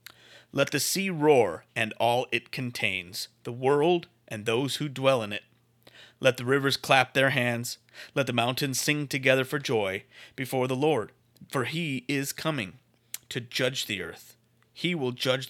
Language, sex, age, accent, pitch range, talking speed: English, male, 30-49, American, 115-135 Hz, 165 wpm